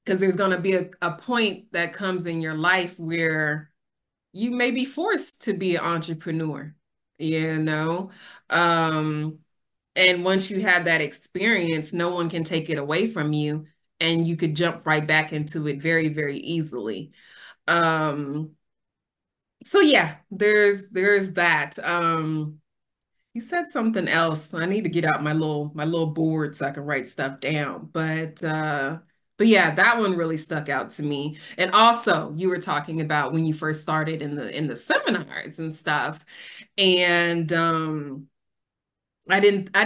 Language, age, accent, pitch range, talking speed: English, 20-39, American, 155-180 Hz, 165 wpm